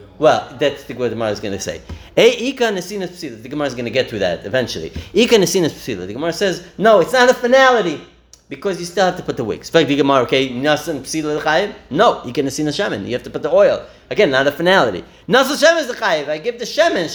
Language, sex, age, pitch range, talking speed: English, male, 30-49, 130-220 Hz, 250 wpm